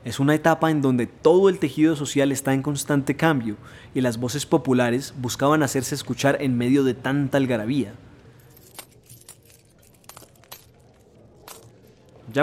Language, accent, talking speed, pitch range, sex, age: Spanish, Colombian, 125 wpm, 125-150 Hz, male, 20-39